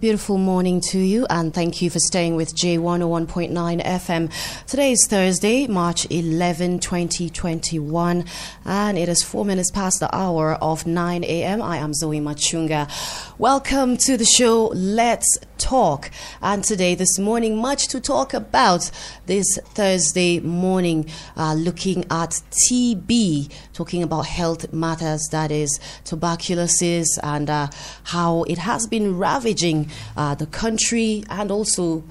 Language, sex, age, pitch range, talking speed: English, female, 30-49, 155-185 Hz, 135 wpm